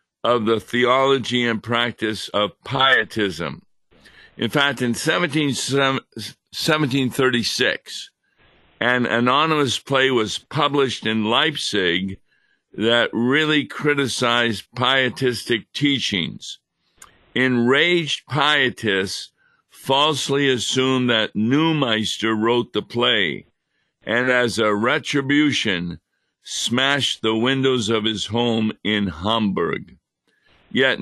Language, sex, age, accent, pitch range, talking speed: English, male, 50-69, American, 110-135 Hz, 85 wpm